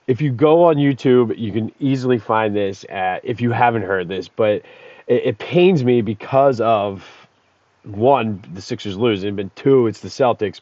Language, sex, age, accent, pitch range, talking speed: English, male, 30-49, American, 110-140 Hz, 180 wpm